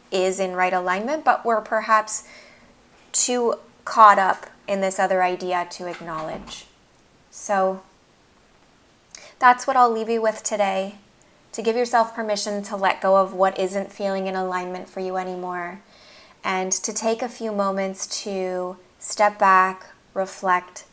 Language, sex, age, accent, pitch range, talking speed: English, female, 20-39, American, 185-210 Hz, 145 wpm